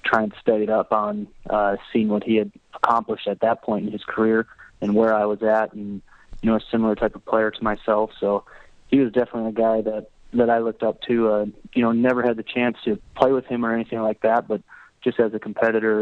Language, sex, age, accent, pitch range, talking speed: English, male, 20-39, American, 105-115 Hz, 245 wpm